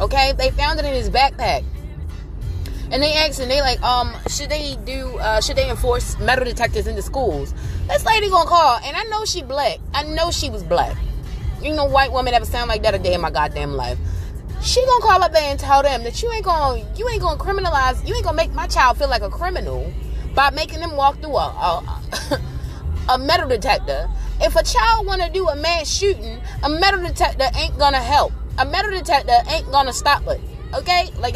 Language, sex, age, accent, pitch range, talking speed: English, female, 20-39, American, 265-380 Hz, 215 wpm